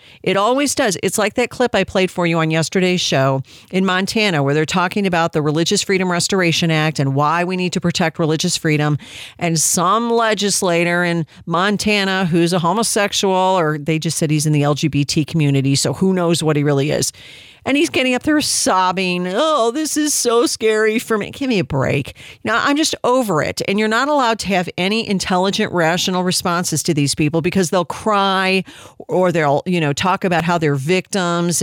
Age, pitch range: 40-59, 160-205 Hz